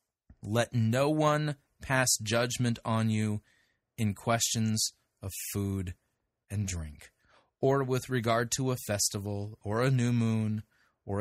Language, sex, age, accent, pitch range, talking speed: English, male, 30-49, American, 110-135 Hz, 130 wpm